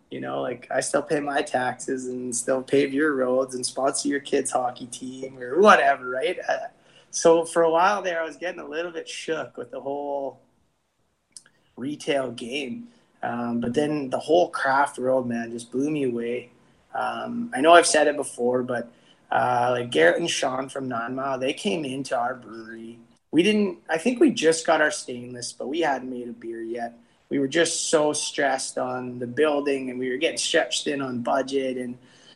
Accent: American